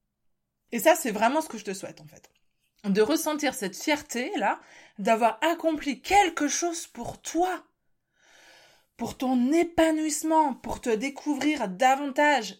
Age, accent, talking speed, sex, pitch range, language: 20-39, French, 140 wpm, female, 190-285 Hz, French